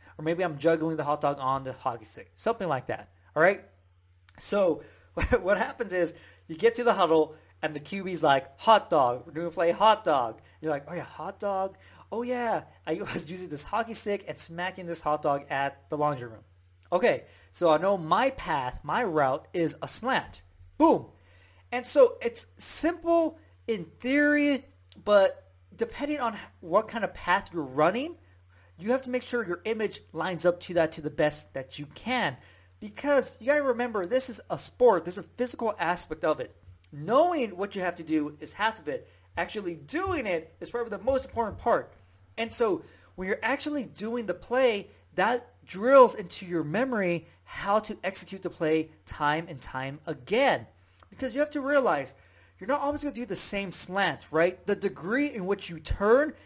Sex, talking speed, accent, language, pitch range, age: male, 190 wpm, American, English, 150-235 Hz, 30-49